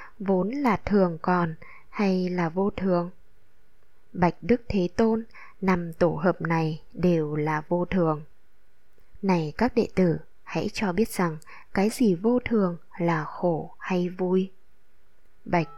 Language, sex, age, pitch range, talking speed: Vietnamese, female, 20-39, 165-215 Hz, 140 wpm